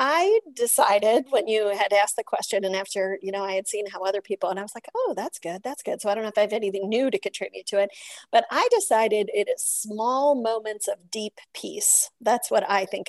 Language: English